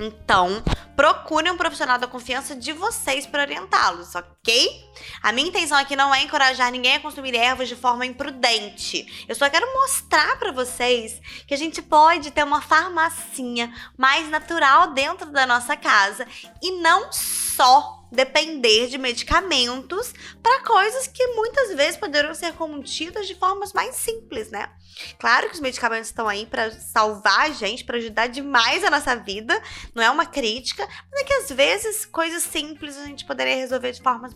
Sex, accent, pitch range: female, Brazilian, 230-310 Hz